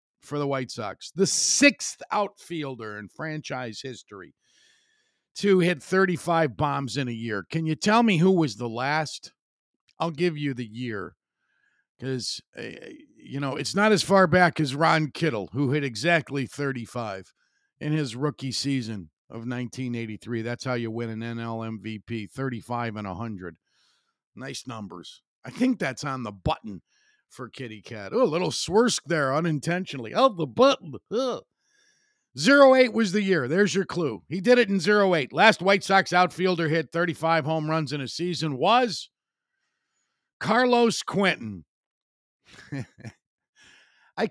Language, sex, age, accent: English, male, 50-69, American